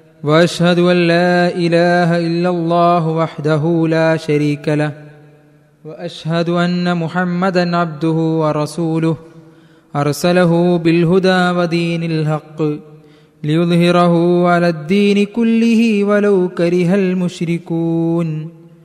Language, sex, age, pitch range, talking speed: Malayalam, male, 20-39, 170-205 Hz, 85 wpm